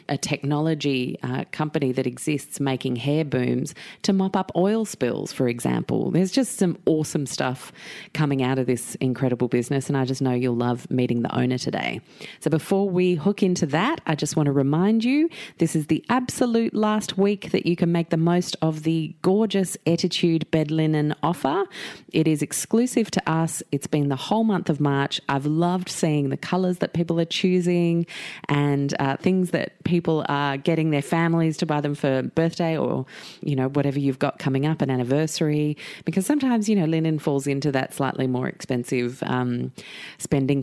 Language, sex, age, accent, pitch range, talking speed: English, female, 30-49, Australian, 135-170 Hz, 190 wpm